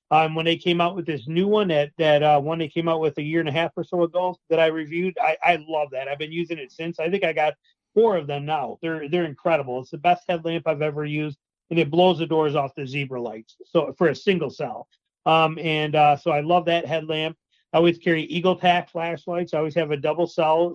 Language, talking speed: English, 255 wpm